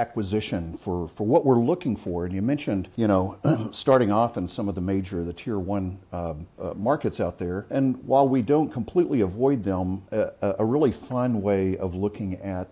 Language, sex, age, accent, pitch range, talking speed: English, male, 50-69, American, 90-115 Hz, 200 wpm